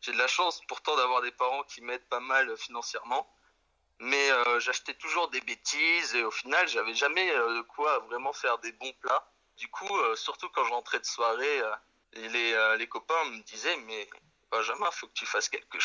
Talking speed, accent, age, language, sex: 205 wpm, French, 30-49, French, male